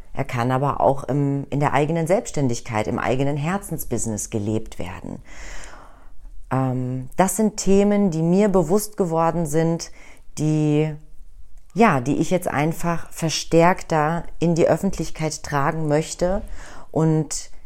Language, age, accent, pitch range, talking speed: German, 40-59, German, 140-180 Hz, 115 wpm